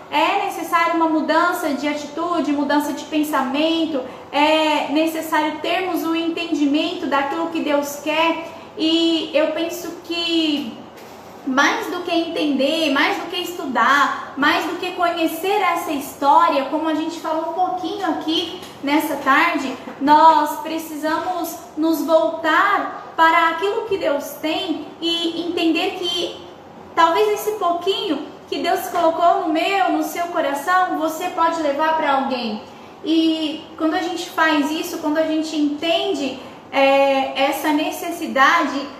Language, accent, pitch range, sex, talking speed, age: Portuguese, Brazilian, 290-335 Hz, female, 130 wpm, 20-39